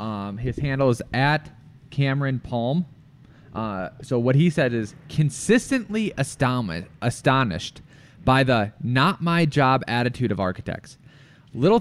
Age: 20-39